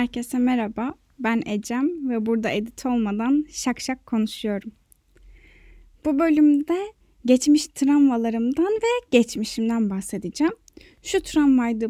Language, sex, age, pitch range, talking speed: Turkish, female, 10-29, 230-305 Hz, 100 wpm